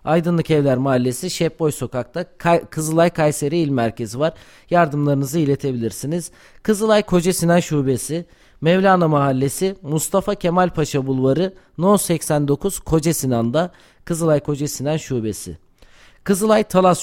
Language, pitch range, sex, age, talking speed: Turkish, 135-175 Hz, male, 40-59, 105 wpm